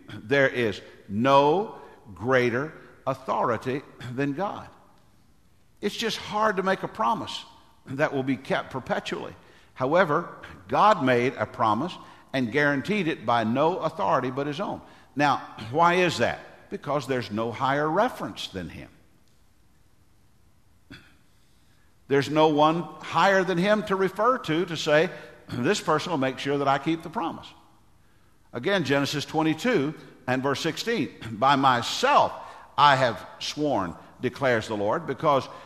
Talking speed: 135 wpm